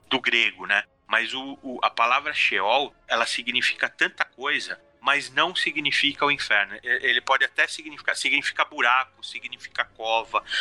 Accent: Brazilian